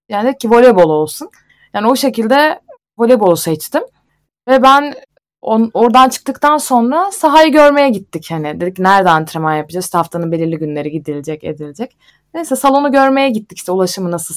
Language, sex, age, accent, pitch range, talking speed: Turkish, female, 20-39, native, 170-260 Hz, 150 wpm